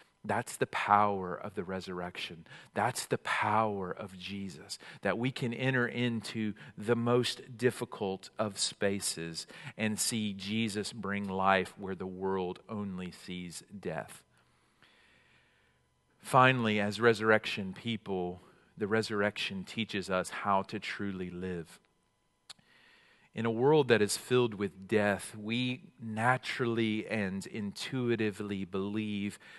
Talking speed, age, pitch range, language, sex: 115 wpm, 40-59, 100-115 Hz, English, male